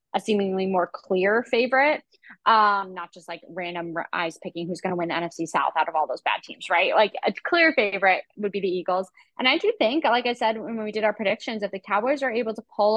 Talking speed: 245 wpm